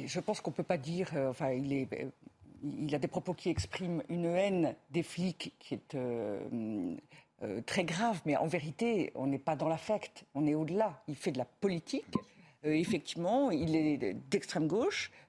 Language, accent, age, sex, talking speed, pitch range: French, French, 50-69, female, 190 wpm, 155-205 Hz